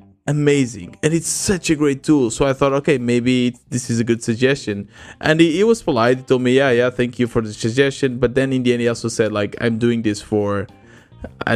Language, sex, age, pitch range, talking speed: English, male, 20-39, 110-135 Hz, 240 wpm